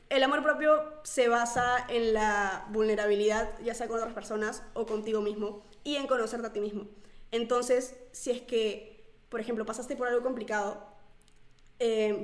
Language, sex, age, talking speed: Spanish, female, 20-39, 160 wpm